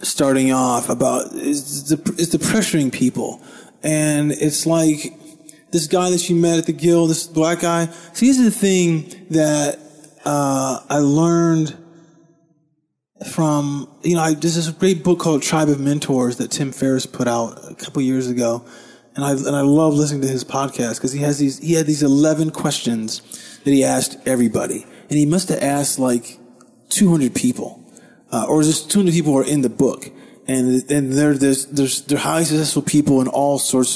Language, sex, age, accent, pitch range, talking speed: English, male, 20-39, American, 125-160 Hz, 190 wpm